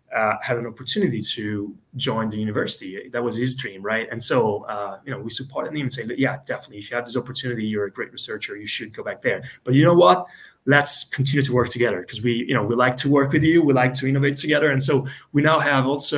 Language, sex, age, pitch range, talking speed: English, male, 20-39, 110-135 Hz, 260 wpm